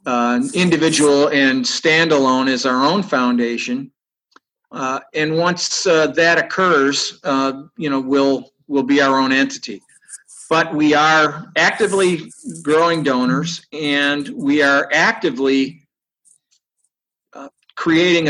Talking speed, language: 110 wpm, English